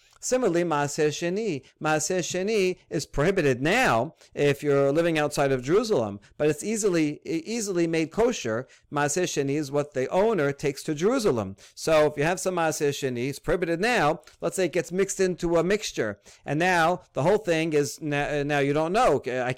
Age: 40-59